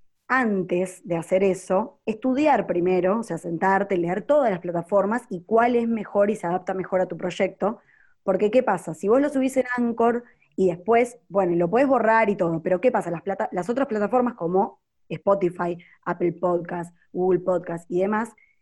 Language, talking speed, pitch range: Spanish, 180 wpm, 180-235 Hz